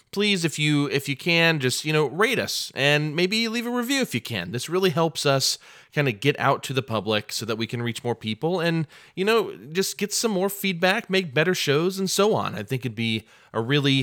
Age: 30-49